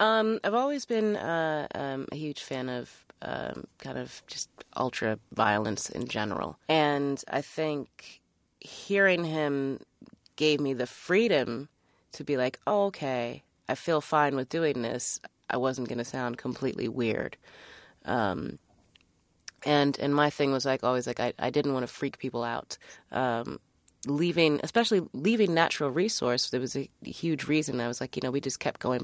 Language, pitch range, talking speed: English, 125-155 Hz, 170 wpm